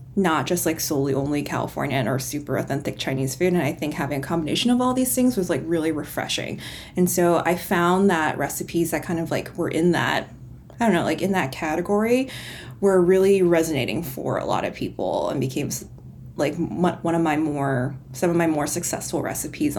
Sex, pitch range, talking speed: female, 145-190 Hz, 200 wpm